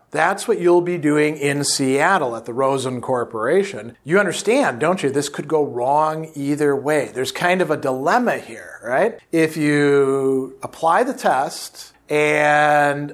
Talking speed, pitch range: 155 wpm, 140-170 Hz